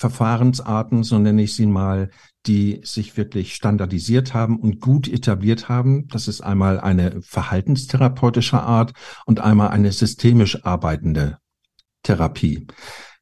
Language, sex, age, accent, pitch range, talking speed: German, male, 50-69, German, 95-120 Hz, 125 wpm